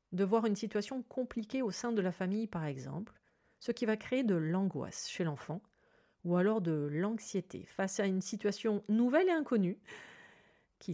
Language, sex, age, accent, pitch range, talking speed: French, female, 40-59, French, 170-220 Hz, 175 wpm